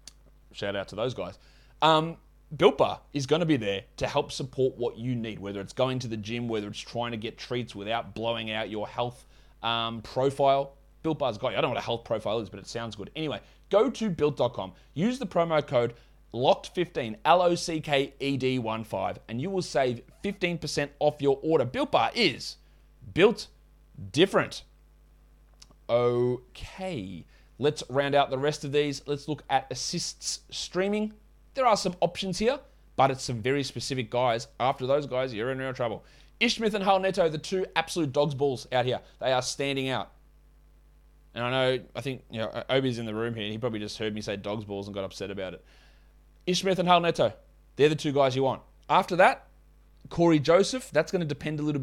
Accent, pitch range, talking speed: Australian, 120-155 Hz, 195 wpm